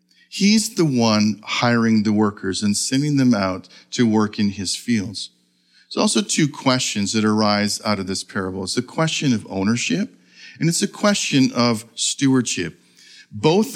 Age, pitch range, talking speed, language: 50-69, 110-145 Hz, 160 wpm, English